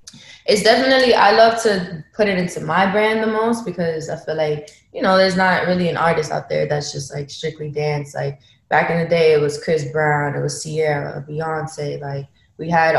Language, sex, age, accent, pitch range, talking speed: English, female, 20-39, American, 150-185 Hz, 215 wpm